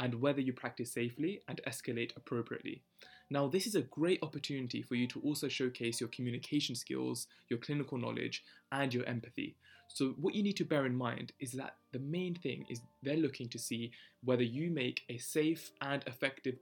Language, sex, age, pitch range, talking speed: English, male, 20-39, 125-150 Hz, 190 wpm